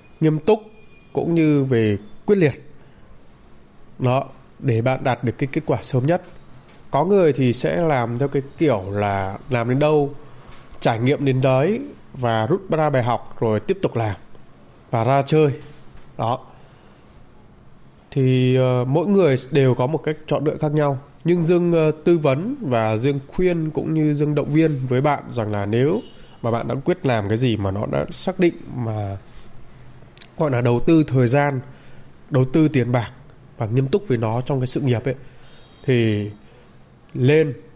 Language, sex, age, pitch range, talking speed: Vietnamese, male, 20-39, 120-150 Hz, 175 wpm